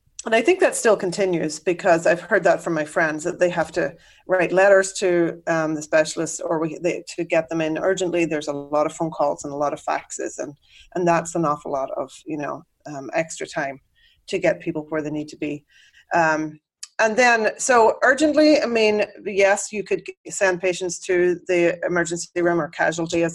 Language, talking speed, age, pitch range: English, 210 wpm, 30-49, 155-185 Hz